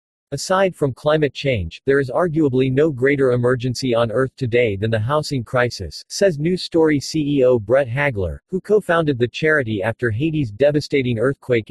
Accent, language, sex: American, English, male